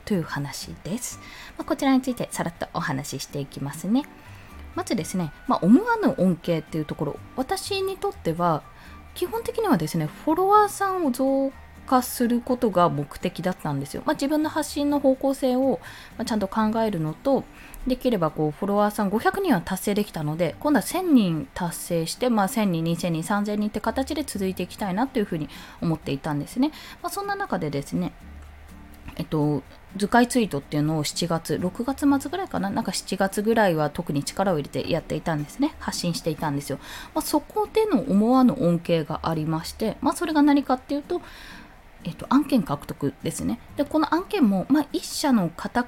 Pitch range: 160-265 Hz